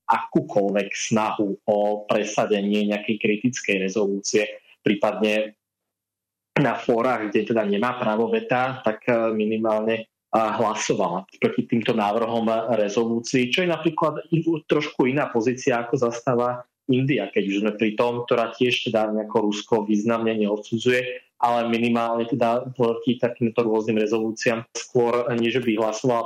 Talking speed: 125 wpm